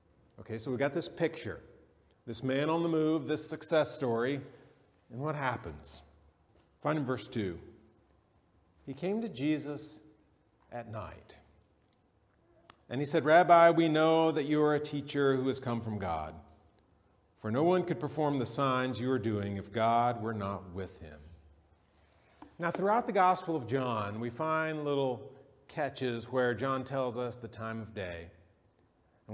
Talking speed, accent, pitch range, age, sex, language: 160 wpm, American, 110-150 Hz, 40-59, male, English